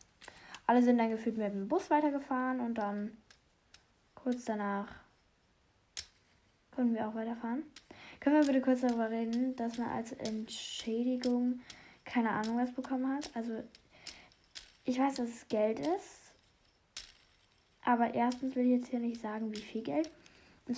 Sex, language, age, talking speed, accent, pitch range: female, German, 10-29, 145 wpm, German, 225-260 Hz